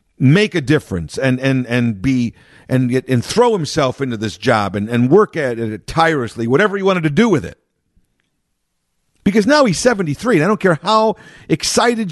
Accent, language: American, English